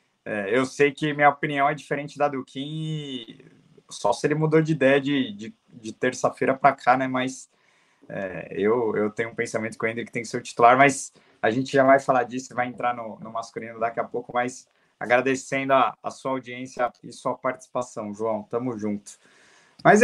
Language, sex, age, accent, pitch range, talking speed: Portuguese, male, 20-39, Brazilian, 115-140 Hz, 200 wpm